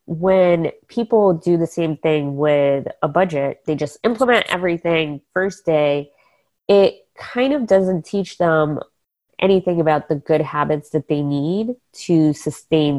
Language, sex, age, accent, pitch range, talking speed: English, female, 20-39, American, 145-185 Hz, 145 wpm